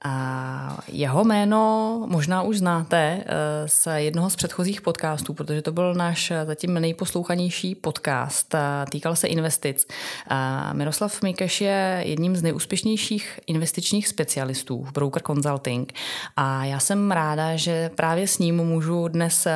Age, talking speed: 20-39, 130 wpm